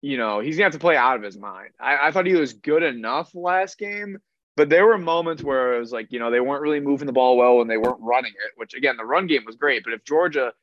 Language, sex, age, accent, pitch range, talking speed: English, male, 20-39, American, 120-165 Hz, 300 wpm